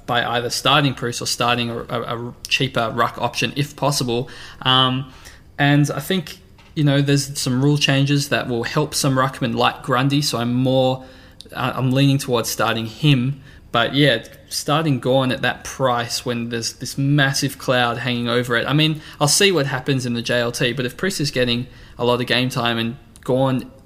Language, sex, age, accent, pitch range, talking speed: English, male, 20-39, Australian, 120-140 Hz, 185 wpm